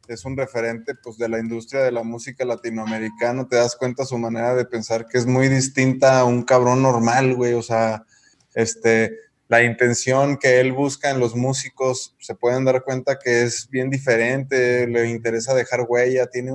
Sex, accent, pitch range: male, Mexican, 115-135 Hz